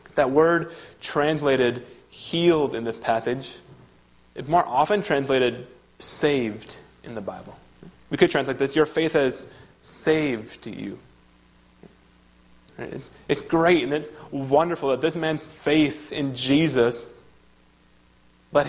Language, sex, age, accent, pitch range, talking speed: English, male, 30-49, American, 120-155 Hz, 115 wpm